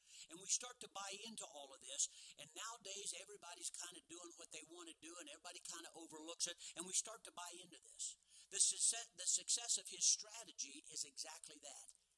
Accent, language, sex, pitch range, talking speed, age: American, English, male, 135-200 Hz, 205 wpm, 50-69